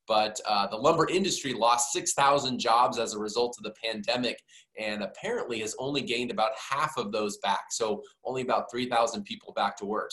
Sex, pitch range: male, 105-130 Hz